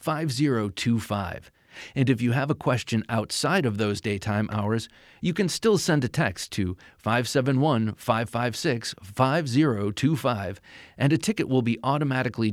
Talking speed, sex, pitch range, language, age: 125 wpm, male, 105-145 Hz, English, 40-59